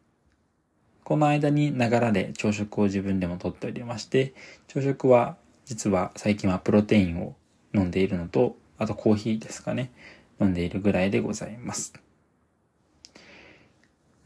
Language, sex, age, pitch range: Japanese, male, 20-39, 95-120 Hz